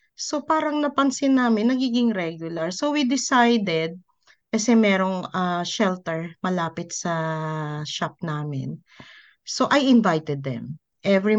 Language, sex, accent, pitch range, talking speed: Filipino, female, native, 150-215 Hz, 115 wpm